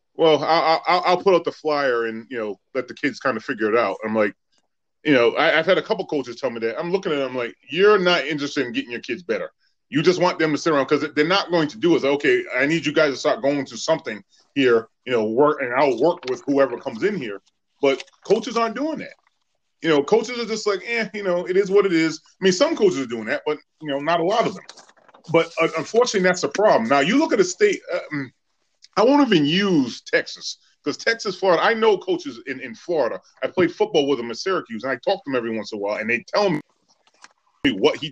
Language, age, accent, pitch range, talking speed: English, 30-49, American, 140-210 Hz, 265 wpm